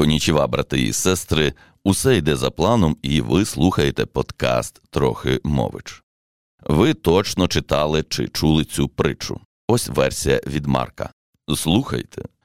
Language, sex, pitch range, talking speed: Ukrainian, male, 65-90 Hz, 125 wpm